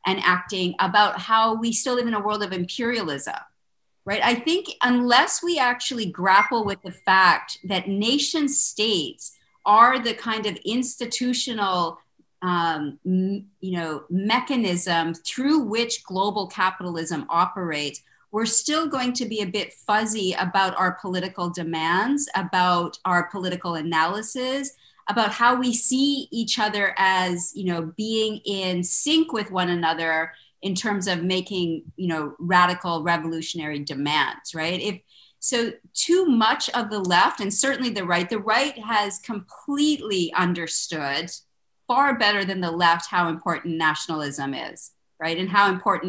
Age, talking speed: 40-59, 140 wpm